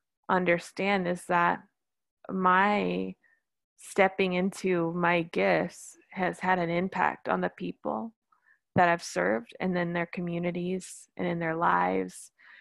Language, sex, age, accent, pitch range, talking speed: English, female, 20-39, American, 170-225 Hz, 125 wpm